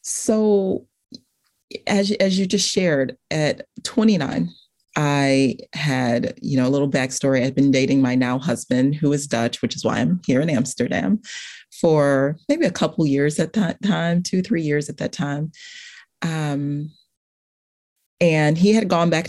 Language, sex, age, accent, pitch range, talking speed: English, female, 30-49, American, 145-225 Hz, 160 wpm